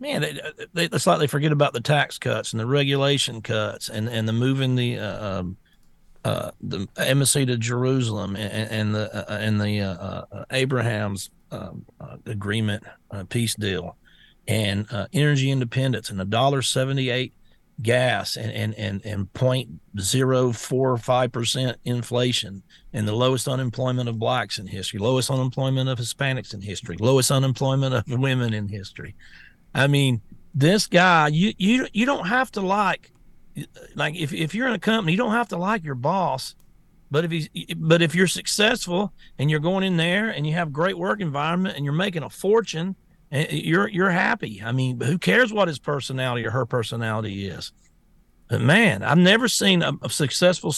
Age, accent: 50-69, American